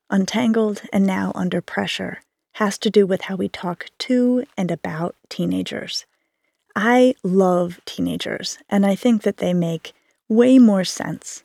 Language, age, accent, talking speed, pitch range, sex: English, 30-49, American, 145 wpm, 195-255 Hz, female